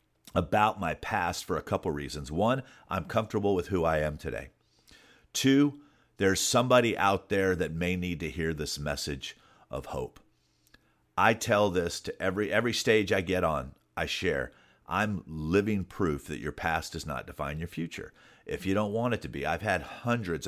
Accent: American